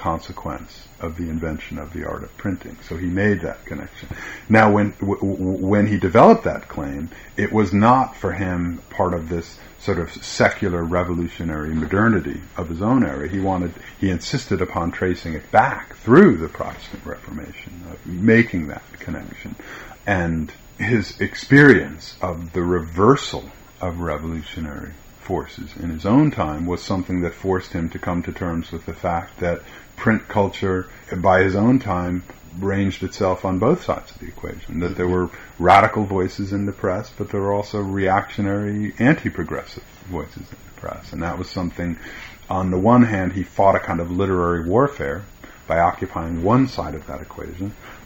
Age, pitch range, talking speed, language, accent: 50-69, 85-100 Hz, 165 wpm, English, American